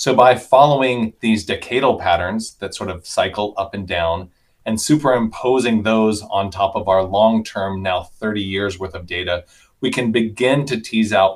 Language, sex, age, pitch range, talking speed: English, male, 30-49, 95-120 Hz, 175 wpm